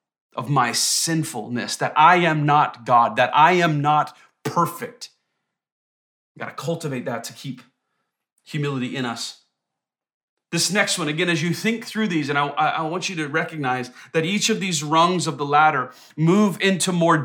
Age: 30-49